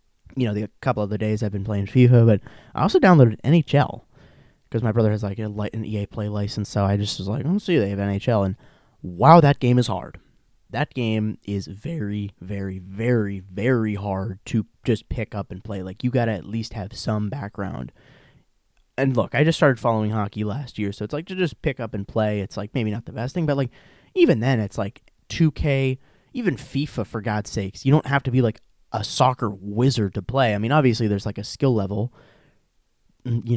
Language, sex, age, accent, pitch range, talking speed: English, male, 20-39, American, 105-135 Hz, 220 wpm